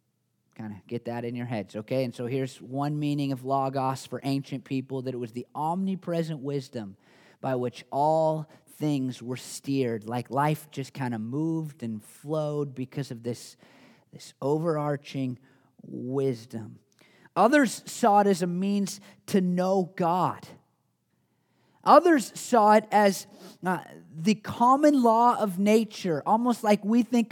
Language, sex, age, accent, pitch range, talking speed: English, male, 30-49, American, 135-200 Hz, 145 wpm